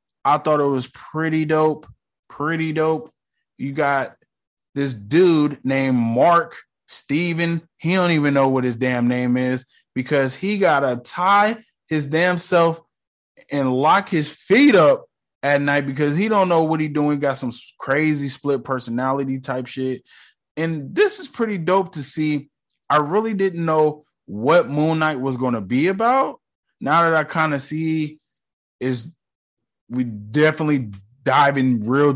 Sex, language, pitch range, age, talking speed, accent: male, English, 125-155 Hz, 20-39, 155 wpm, American